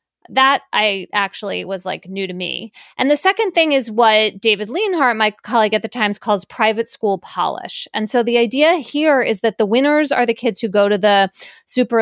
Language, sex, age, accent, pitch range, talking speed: English, female, 20-39, American, 200-270 Hz, 210 wpm